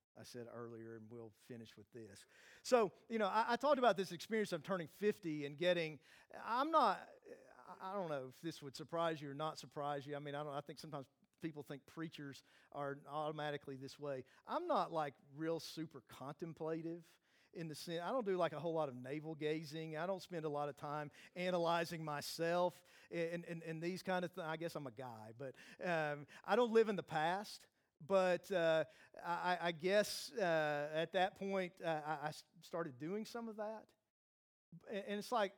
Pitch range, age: 135-190 Hz, 50-69